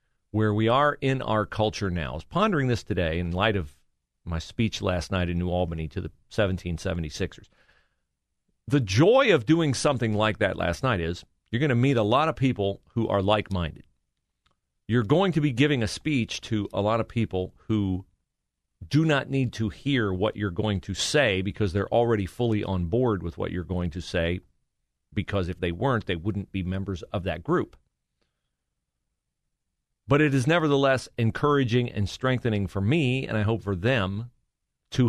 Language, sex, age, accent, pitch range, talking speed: English, male, 40-59, American, 90-120 Hz, 185 wpm